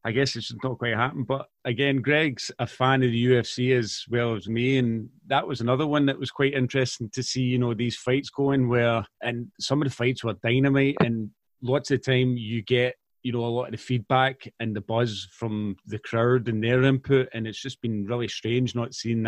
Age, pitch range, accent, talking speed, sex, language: 30-49, 115-130 Hz, British, 225 wpm, male, English